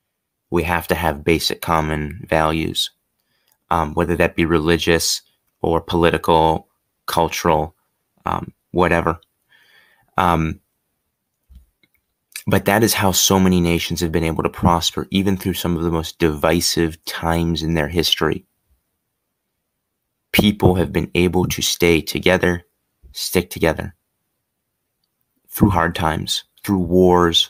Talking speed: 120 wpm